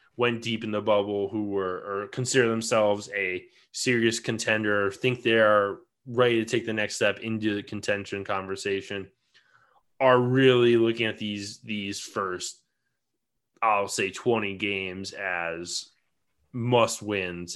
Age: 20-39